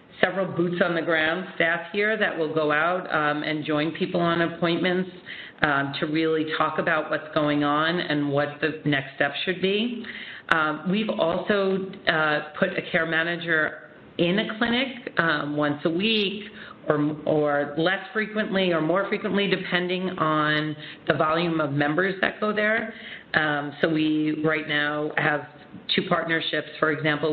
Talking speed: 160 wpm